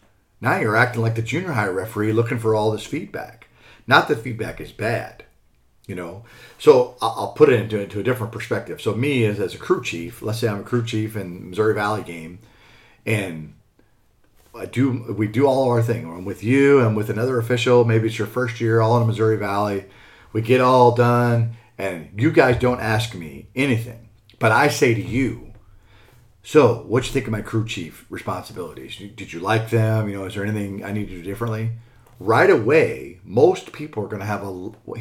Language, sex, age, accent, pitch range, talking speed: English, male, 40-59, American, 100-120 Hz, 205 wpm